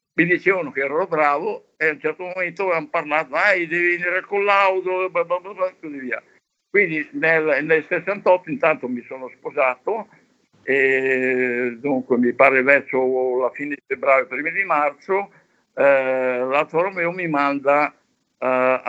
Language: Italian